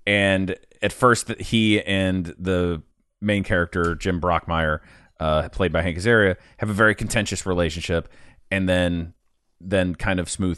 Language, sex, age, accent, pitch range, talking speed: English, male, 30-49, American, 90-130 Hz, 145 wpm